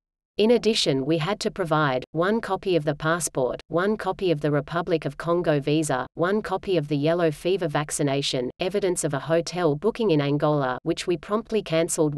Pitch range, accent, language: 150-180 Hz, Australian, English